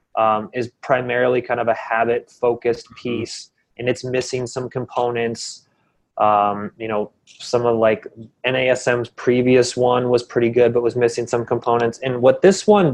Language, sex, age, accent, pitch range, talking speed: English, male, 20-39, American, 115-130 Hz, 160 wpm